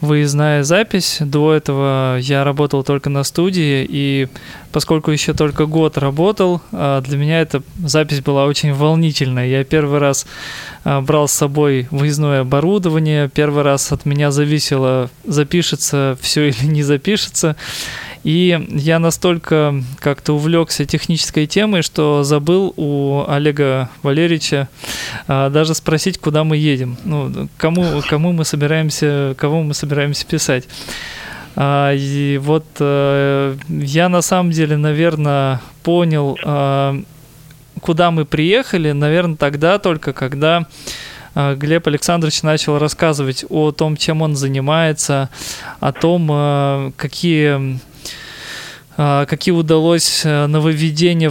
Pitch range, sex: 140-160 Hz, male